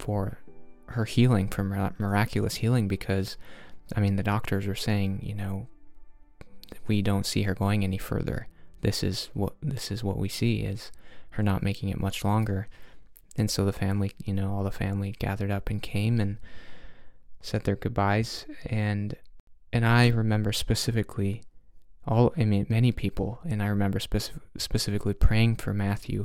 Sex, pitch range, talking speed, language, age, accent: male, 100-115 Hz, 165 wpm, English, 20-39, American